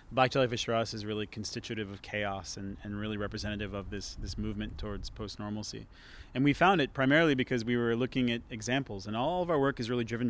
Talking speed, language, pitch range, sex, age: 220 wpm, Finnish, 105-120 Hz, male, 30-49